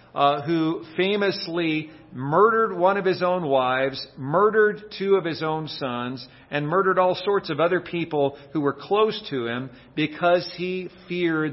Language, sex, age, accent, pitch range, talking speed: English, male, 50-69, American, 130-165 Hz, 155 wpm